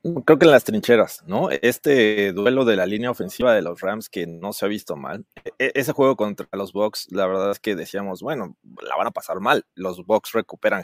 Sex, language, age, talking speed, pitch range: male, Spanish, 30-49, 225 wpm, 105-135 Hz